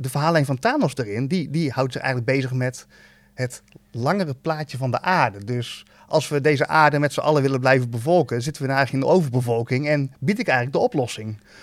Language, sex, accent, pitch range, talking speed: Dutch, male, Dutch, 120-155 Hz, 215 wpm